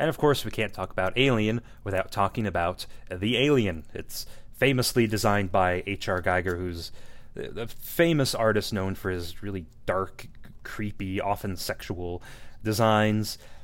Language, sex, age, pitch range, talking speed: English, male, 30-49, 95-115 Hz, 140 wpm